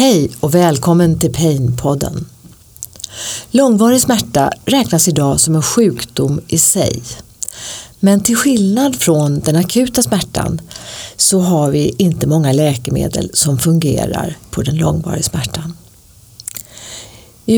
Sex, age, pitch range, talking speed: female, 40-59, 125-180 Hz, 120 wpm